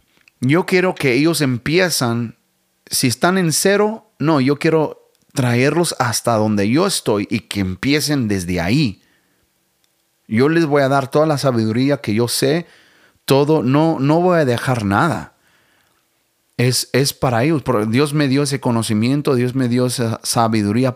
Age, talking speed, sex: 30-49, 155 wpm, male